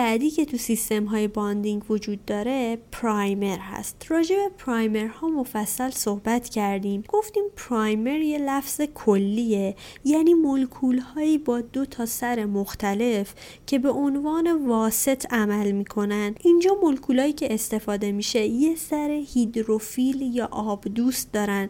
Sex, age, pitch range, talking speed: female, 30-49, 210-270 Hz, 135 wpm